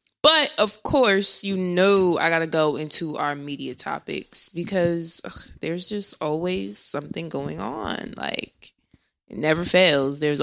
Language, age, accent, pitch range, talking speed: English, 20-39, American, 155-185 Hz, 150 wpm